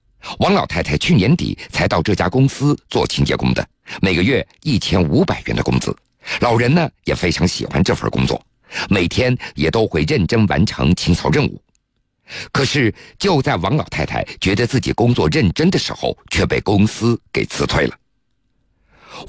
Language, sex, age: Chinese, male, 50-69